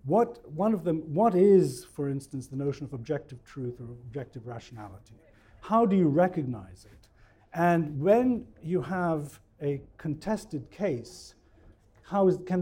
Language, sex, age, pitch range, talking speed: English, male, 50-69, 125-180 Hz, 145 wpm